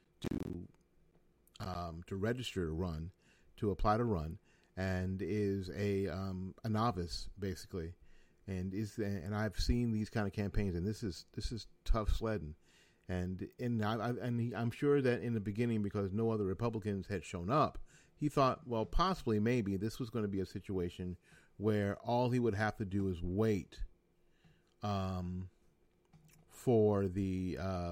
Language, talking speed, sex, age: English, 165 wpm, male, 40-59